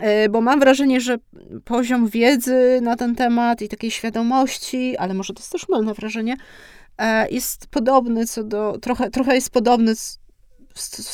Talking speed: 150 wpm